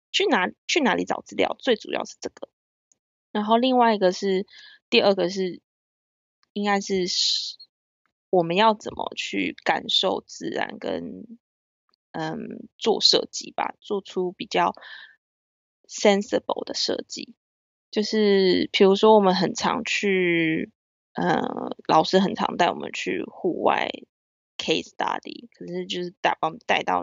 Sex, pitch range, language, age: female, 180-245 Hz, Chinese, 20-39